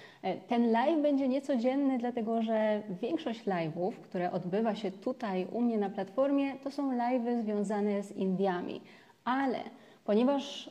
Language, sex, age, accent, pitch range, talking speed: Polish, female, 30-49, native, 195-250 Hz, 135 wpm